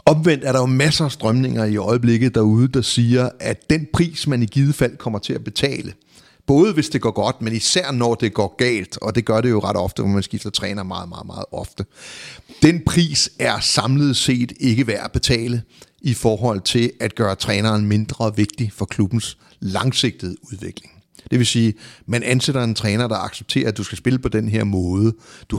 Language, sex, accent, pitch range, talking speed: Danish, male, native, 105-130 Hz, 210 wpm